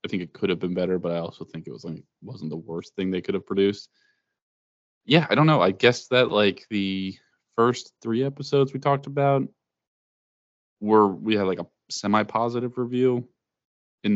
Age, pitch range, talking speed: 20-39, 90-110 Hz, 195 wpm